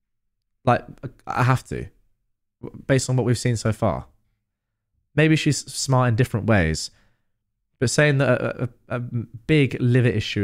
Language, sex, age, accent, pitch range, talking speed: English, male, 20-39, British, 100-135 Hz, 145 wpm